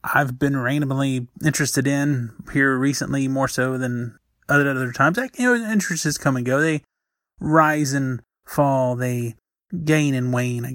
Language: English